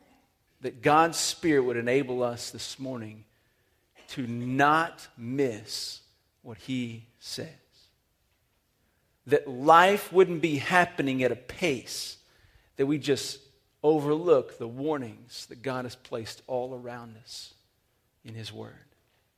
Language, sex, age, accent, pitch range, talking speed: English, male, 40-59, American, 115-150 Hz, 120 wpm